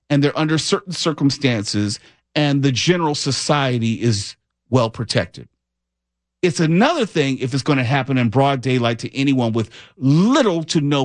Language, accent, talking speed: English, American, 155 wpm